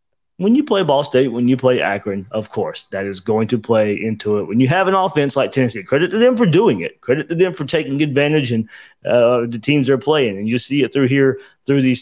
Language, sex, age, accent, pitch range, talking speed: English, male, 30-49, American, 115-135 Hz, 255 wpm